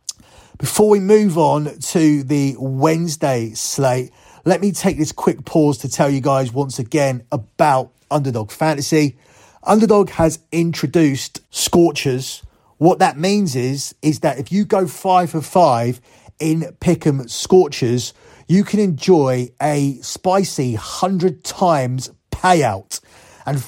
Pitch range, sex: 130-175 Hz, male